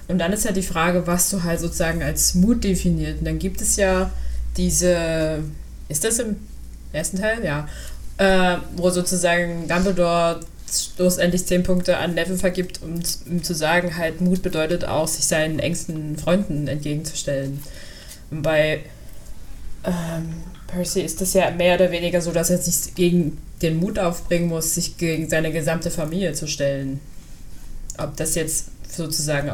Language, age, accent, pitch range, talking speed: German, 20-39, German, 155-180 Hz, 160 wpm